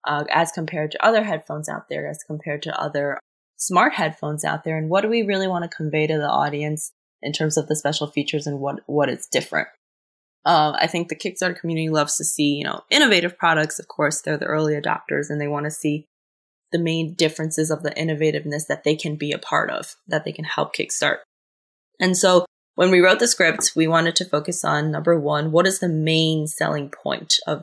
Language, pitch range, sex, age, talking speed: English, 150-175 Hz, female, 20-39, 220 wpm